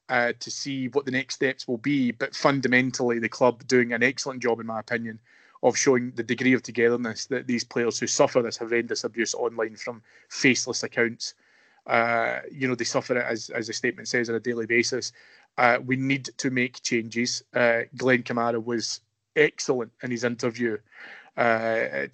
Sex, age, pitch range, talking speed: male, 20-39, 115-125 Hz, 180 wpm